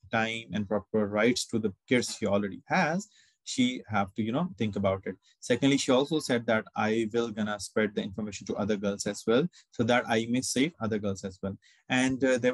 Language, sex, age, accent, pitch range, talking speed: English, male, 20-39, Indian, 105-130 Hz, 220 wpm